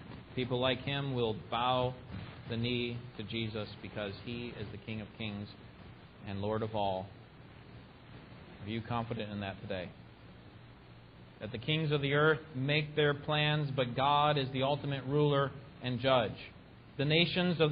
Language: English